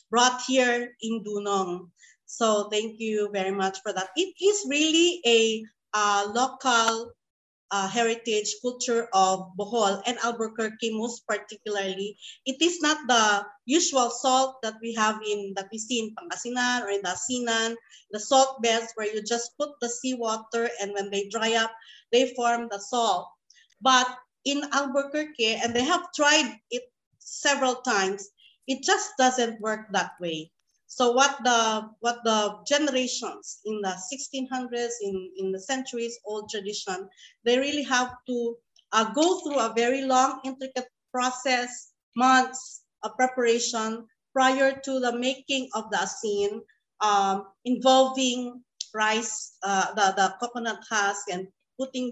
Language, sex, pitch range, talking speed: Filipino, female, 210-255 Hz, 145 wpm